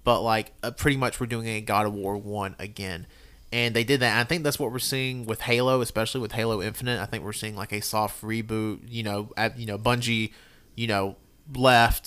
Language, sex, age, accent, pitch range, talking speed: English, male, 30-49, American, 105-130 Hz, 235 wpm